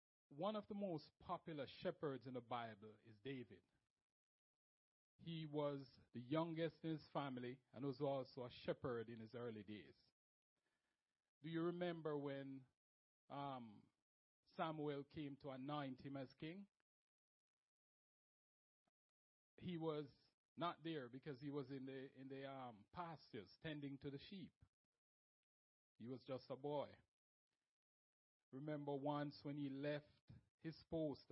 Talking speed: 130 wpm